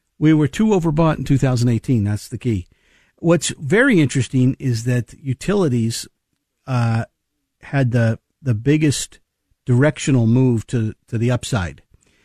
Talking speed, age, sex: 125 wpm, 50-69, male